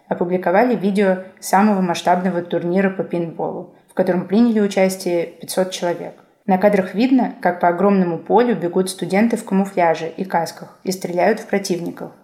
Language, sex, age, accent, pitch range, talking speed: Russian, female, 20-39, native, 175-210 Hz, 145 wpm